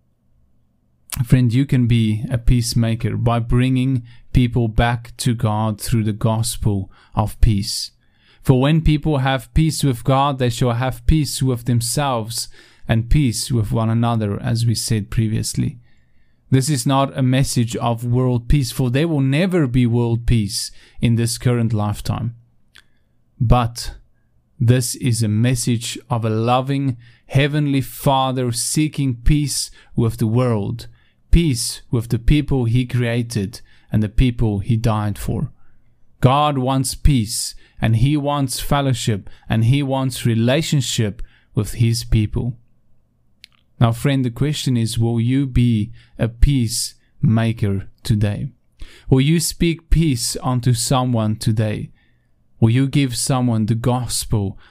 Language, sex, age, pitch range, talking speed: English, male, 30-49, 110-130 Hz, 135 wpm